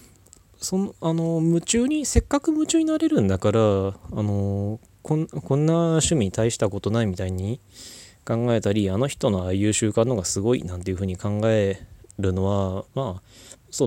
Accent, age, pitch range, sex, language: native, 20-39, 95-140 Hz, male, Japanese